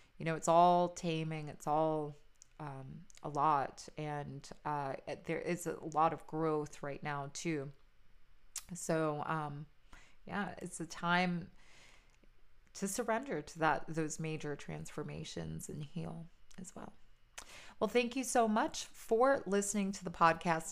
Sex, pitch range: female, 160-195 Hz